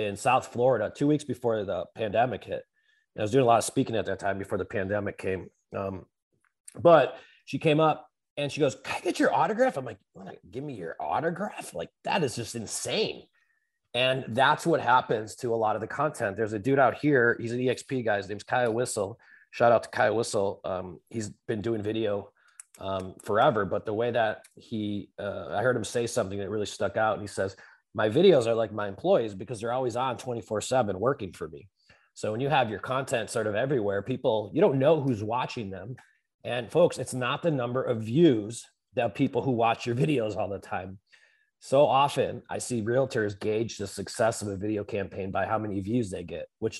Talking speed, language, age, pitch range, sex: 215 wpm, English, 30-49, 105-135 Hz, male